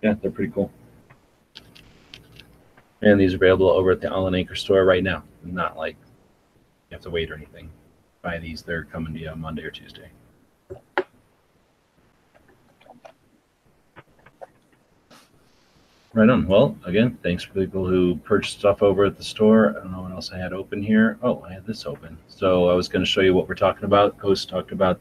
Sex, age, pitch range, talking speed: male, 30-49, 80-95 Hz, 180 wpm